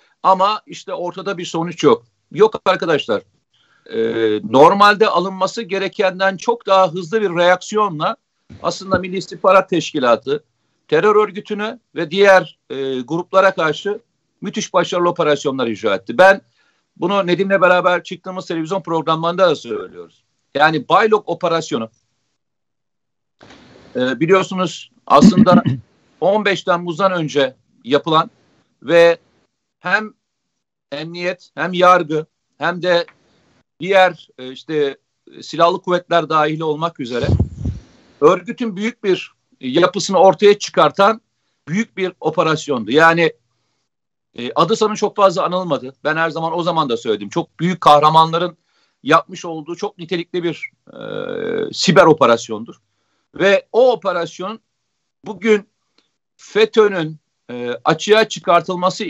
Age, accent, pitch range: 50-69, native, 160-200 Hz